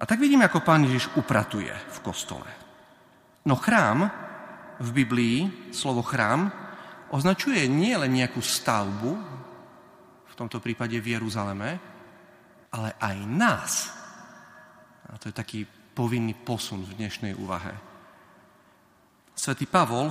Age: 40-59